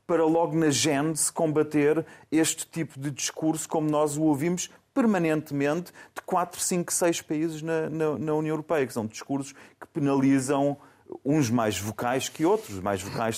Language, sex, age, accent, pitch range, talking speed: Portuguese, male, 30-49, Portuguese, 125-170 Hz, 175 wpm